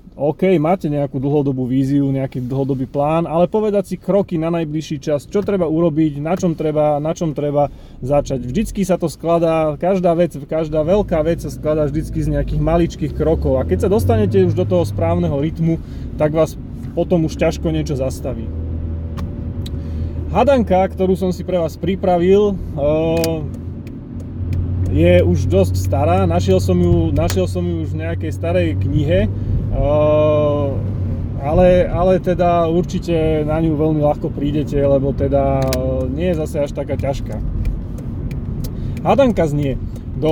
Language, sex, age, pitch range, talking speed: Slovak, male, 30-49, 105-170 Hz, 145 wpm